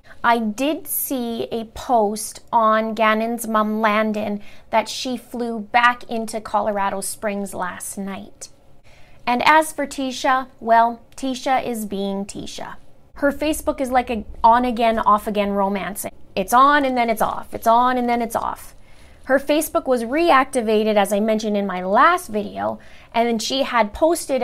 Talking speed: 155 wpm